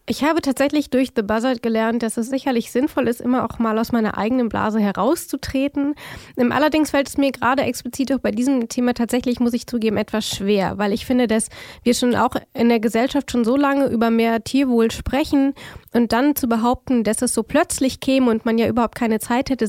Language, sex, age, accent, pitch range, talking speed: German, female, 20-39, German, 220-265 Hz, 210 wpm